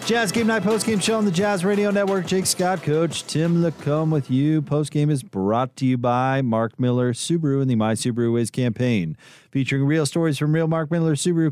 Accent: American